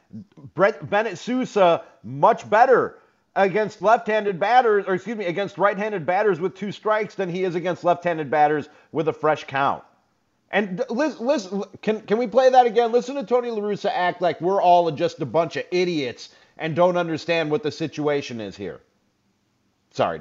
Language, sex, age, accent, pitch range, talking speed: English, male, 40-59, American, 120-180 Hz, 170 wpm